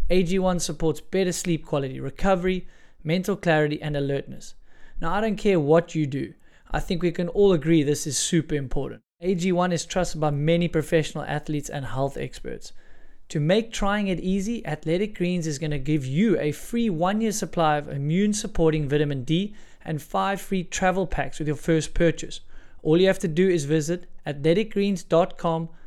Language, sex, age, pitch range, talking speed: English, male, 20-39, 150-180 Hz, 175 wpm